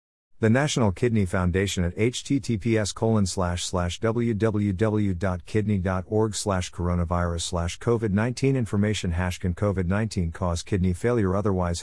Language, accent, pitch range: English, American, 90-110 Hz